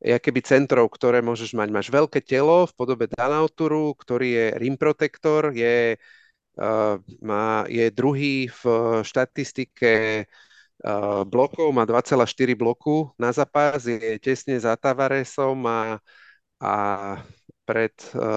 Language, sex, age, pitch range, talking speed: Slovak, male, 40-59, 115-135 Hz, 120 wpm